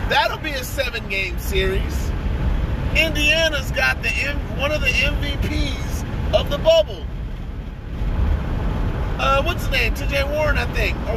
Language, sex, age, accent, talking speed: English, male, 30-49, American, 135 wpm